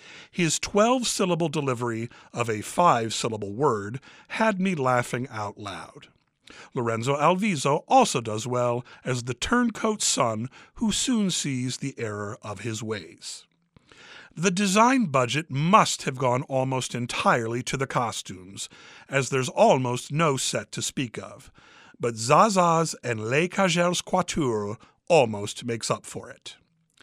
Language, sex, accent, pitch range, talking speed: English, male, American, 115-170 Hz, 130 wpm